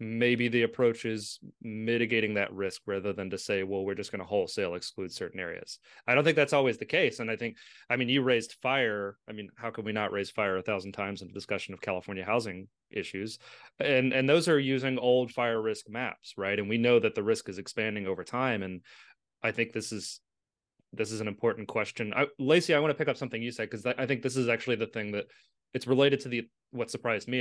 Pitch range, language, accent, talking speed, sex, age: 105-130 Hz, English, American, 240 wpm, male, 30-49